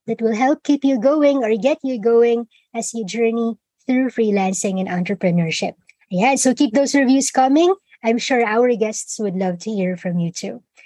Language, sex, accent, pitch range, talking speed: English, male, Filipino, 220-290 Hz, 190 wpm